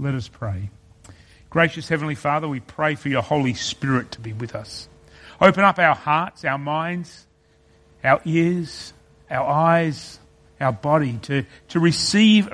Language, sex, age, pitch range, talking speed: English, male, 40-59, 115-165 Hz, 150 wpm